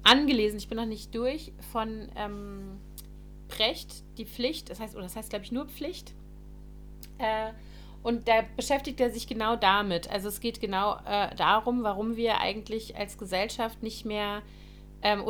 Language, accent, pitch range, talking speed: German, German, 210-245 Hz, 160 wpm